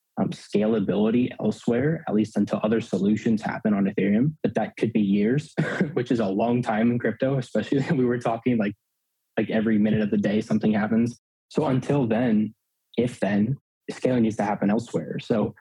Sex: male